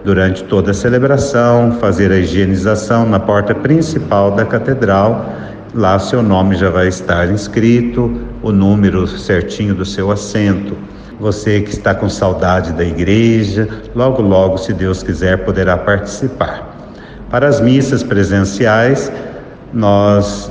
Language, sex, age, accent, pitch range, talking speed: Portuguese, male, 60-79, Brazilian, 100-120 Hz, 130 wpm